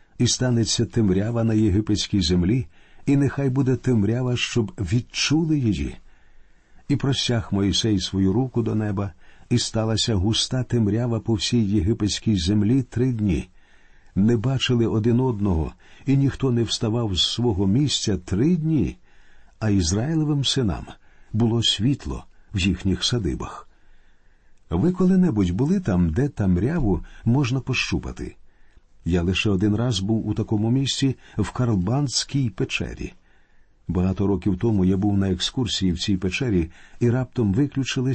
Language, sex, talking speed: Ukrainian, male, 130 wpm